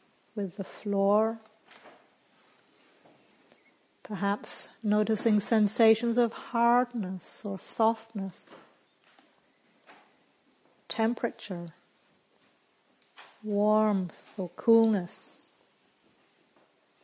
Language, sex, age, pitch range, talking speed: English, female, 60-79, 205-240 Hz, 50 wpm